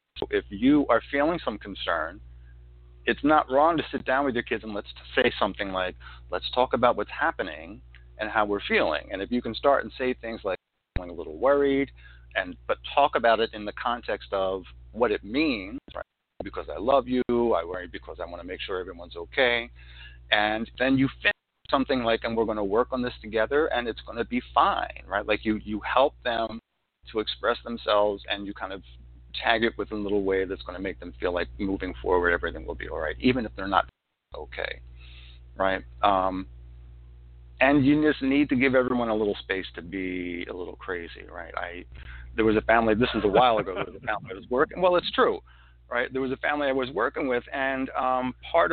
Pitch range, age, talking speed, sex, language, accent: 85-125 Hz, 40-59, 220 wpm, male, English, American